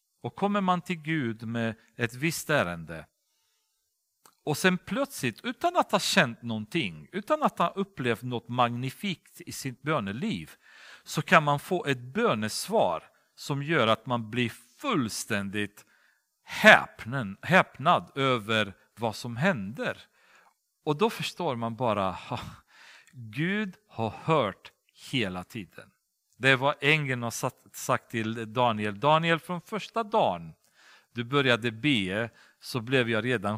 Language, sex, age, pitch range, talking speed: Swedish, male, 50-69, 110-160 Hz, 130 wpm